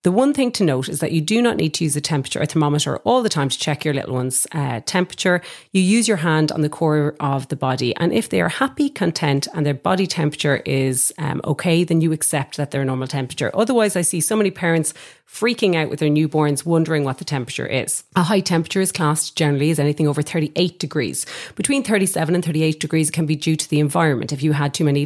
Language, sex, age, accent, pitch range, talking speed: English, female, 30-49, Irish, 145-175 Hz, 240 wpm